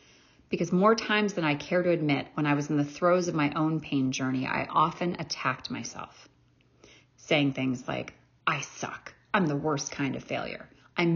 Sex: female